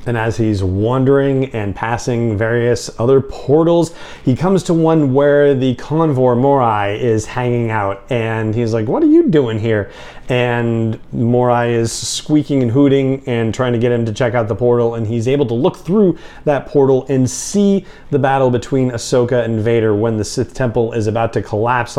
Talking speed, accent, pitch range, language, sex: 185 wpm, American, 110-140 Hz, English, male